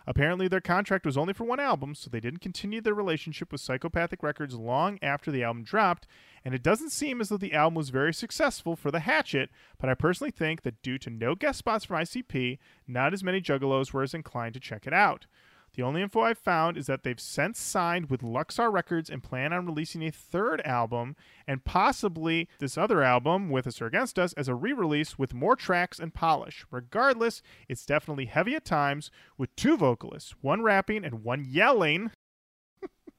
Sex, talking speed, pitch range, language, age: male, 200 wpm, 130-195 Hz, English, 30-49